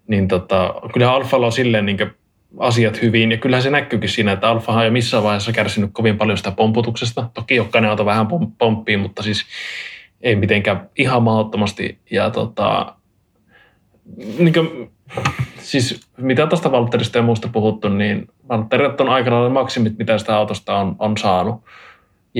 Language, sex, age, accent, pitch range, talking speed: Finnish, male, 20-39, native, 105-120 Hz, 160 wpm